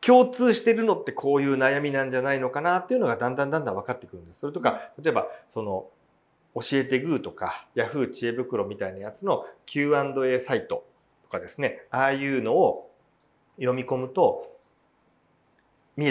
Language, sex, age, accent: Japanese, male, 40-59, native